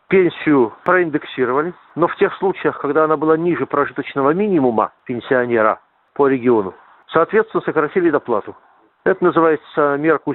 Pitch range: 140-170 Hz